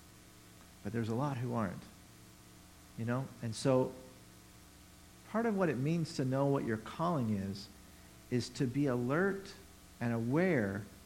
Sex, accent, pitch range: male, American, 105-140 Hz